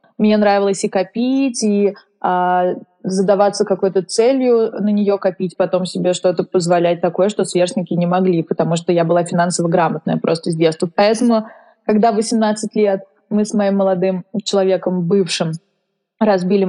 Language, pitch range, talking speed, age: Russian, 180-205 Hz, 145 wpm, 20-39